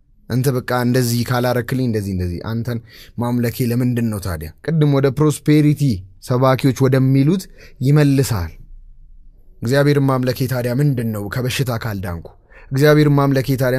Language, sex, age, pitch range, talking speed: English, male, 20-39, 115-155 Hz, 120 wpm